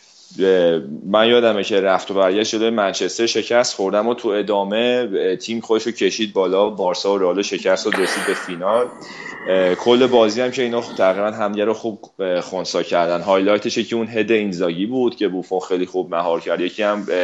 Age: 30-49